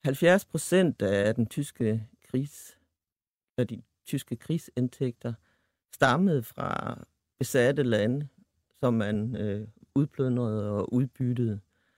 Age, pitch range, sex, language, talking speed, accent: 60-79, 105-135 Hz, male, Danish, 95 wpm, native